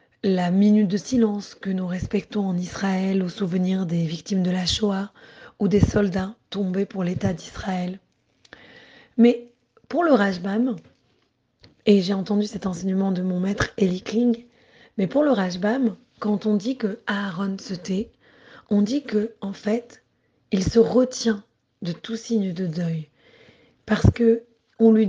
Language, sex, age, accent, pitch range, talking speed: French, female, 30-49, French, 195-230 Hz, 155 wpm